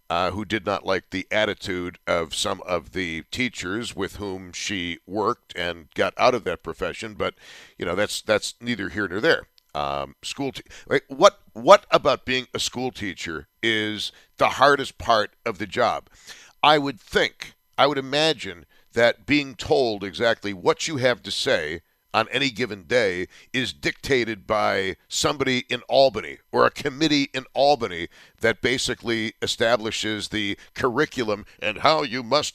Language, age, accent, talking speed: English, 60-79, American, 160 wpm